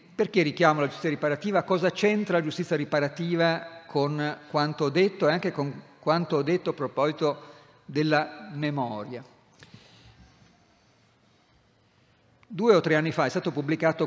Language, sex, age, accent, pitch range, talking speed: Italian, male, 50-69, native, 135-170 Hz, 135 wpm